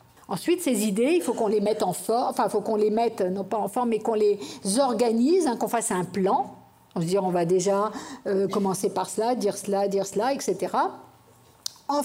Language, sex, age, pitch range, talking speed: French, female, 60-79, 200-275 Hz, 220 wpm